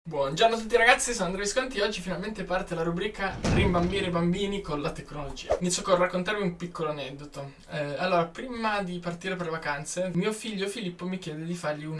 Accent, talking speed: native, 205 wpm